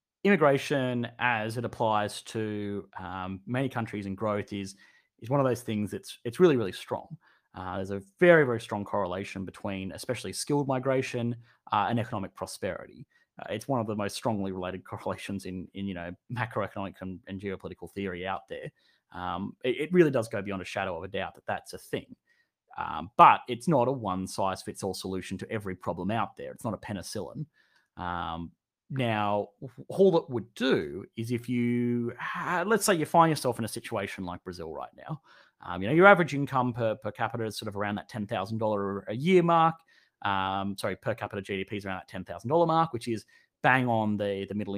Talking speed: 195 wpm